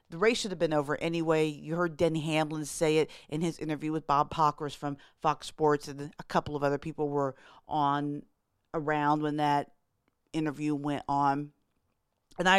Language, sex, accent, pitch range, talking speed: English, female, American, 145-165 Hz, 180 wpm